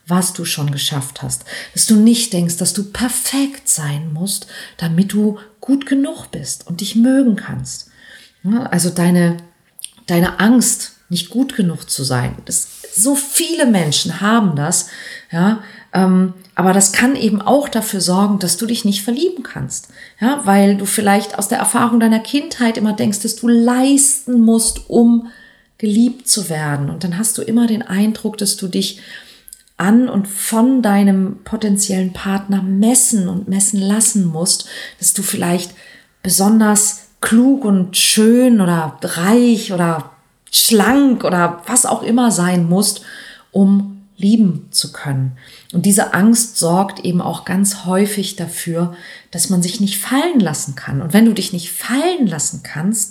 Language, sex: German, female